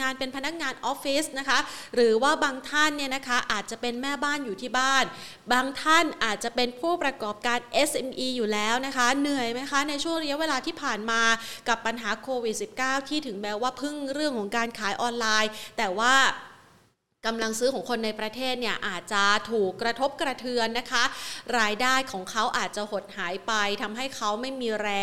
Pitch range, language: 225-275 Hz, Thai